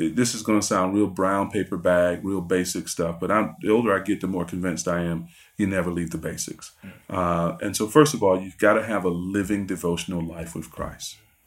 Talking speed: 230 wpm